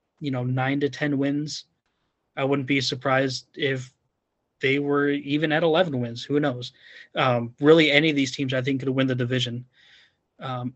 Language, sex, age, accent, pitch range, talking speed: English, male, 30-49, American, 130-150 Hz, 180 wpm